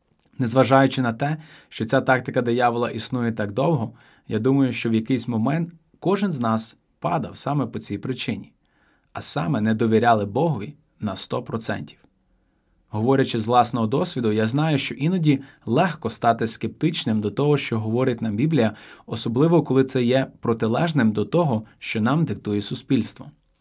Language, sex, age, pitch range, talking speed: Ukrainian, male, 20-39, 110-145 Hz, 150 wpm